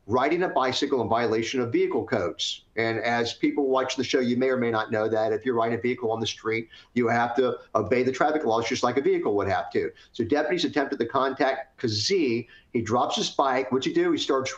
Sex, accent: male, American